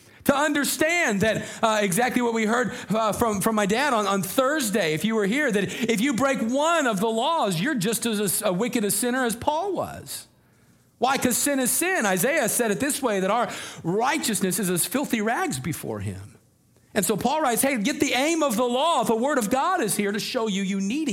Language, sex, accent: English, male, American